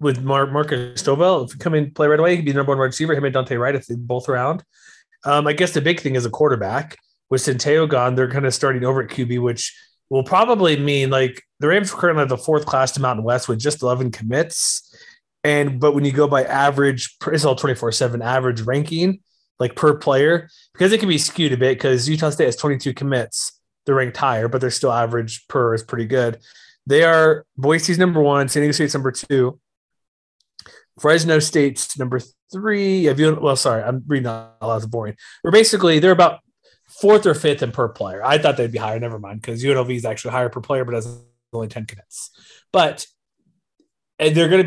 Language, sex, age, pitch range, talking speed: English, male, 30-49, 125-155 Hz, 210 wpm